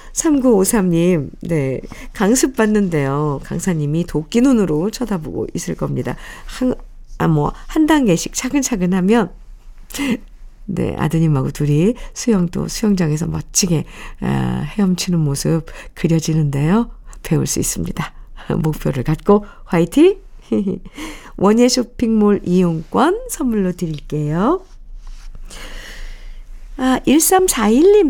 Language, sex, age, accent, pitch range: Korean, female, 50-69, native, 180-260 Hz